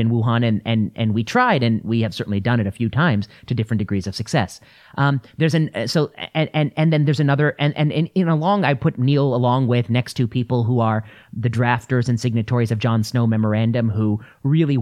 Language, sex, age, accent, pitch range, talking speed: English, male, 30-49, American, 115-140 Hz, 225 wpm